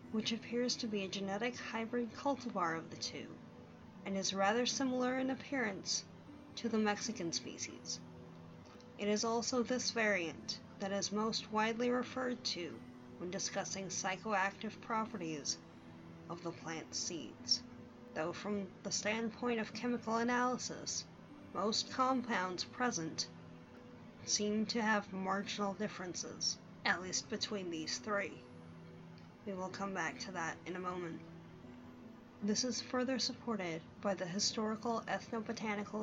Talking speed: 130 wpm